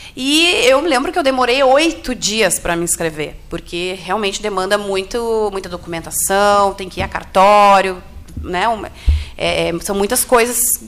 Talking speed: 150 wpm